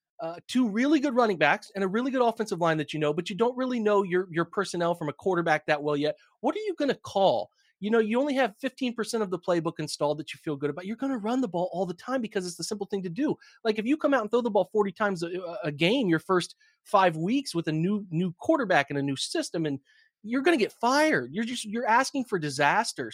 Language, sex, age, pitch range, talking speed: English, male, 30-49, 165-240 Hz, 275 wpm